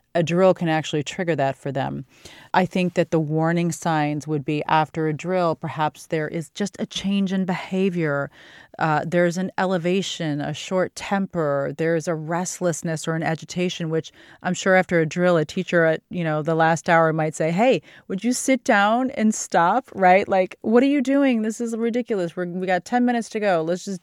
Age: 30-49